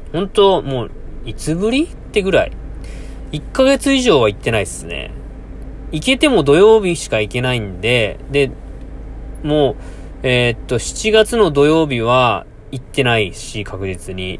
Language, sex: Japanese, male